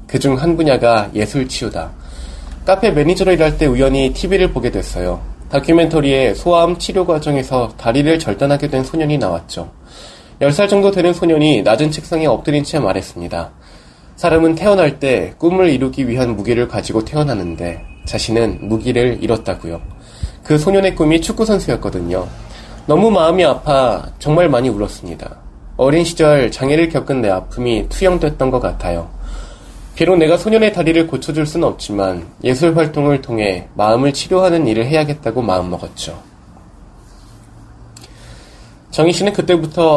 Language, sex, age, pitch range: Korean, male, 20-39, 100-160 Hz